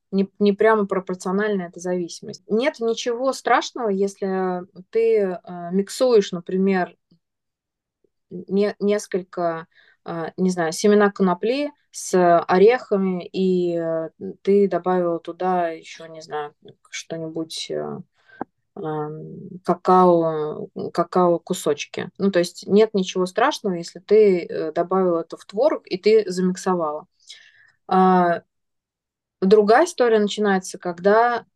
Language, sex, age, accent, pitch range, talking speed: Russian, female, 20-39, native, 175-210 Hz, 105 wpm